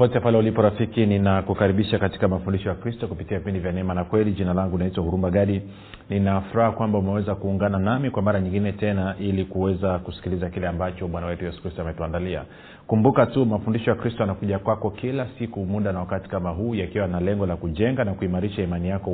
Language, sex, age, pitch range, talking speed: Swahili, male, 40-59, 90-110 Hz, 200 wpm